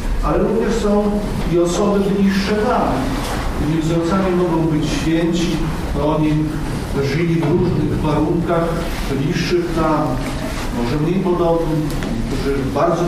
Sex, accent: male, native